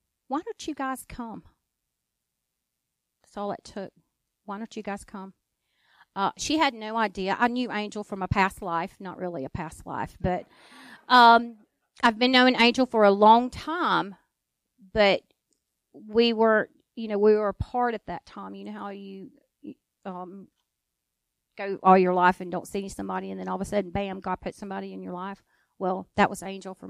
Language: English